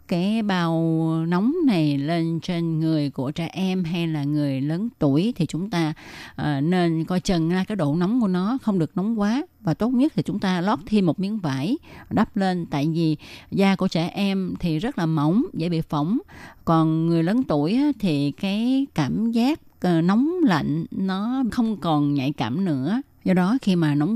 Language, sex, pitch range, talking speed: Vietnamese, female, 150-200 Hz, 190 wpm